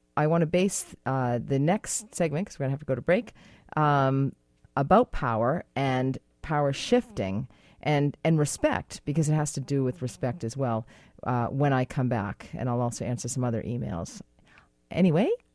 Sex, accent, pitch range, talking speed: female, American, 125-190 Hz, 185 wpm